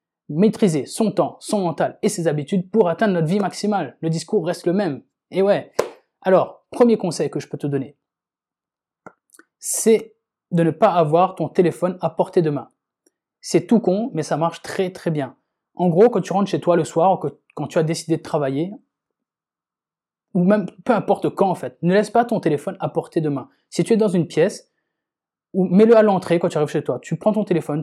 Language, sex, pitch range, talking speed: French, male, 155-200 Hz, 215 wpm